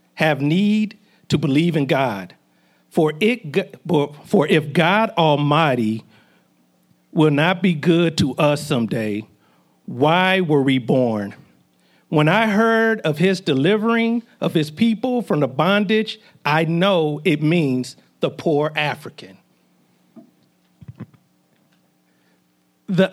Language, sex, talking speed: English, male, 110 wpm